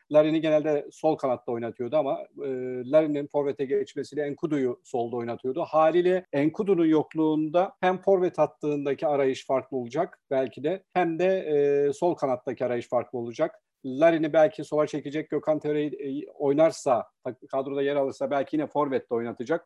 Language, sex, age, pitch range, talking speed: Turkish, male, 40-59, 140-160 Hz, 140 wpm